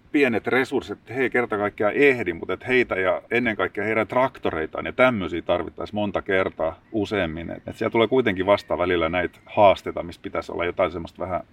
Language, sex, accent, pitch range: Finnish, male, native, 95-115 Hz